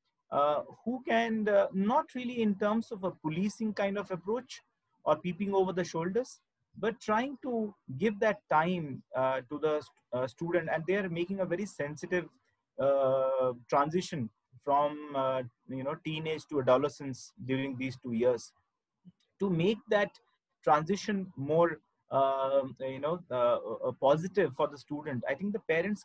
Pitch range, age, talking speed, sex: 125-180 Hz, 30-49, 155 wpm, male